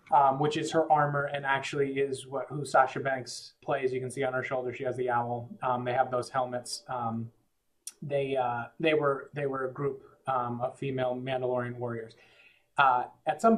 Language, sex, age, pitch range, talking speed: English, male, 30-49, 125-150 Hz, 200 wpm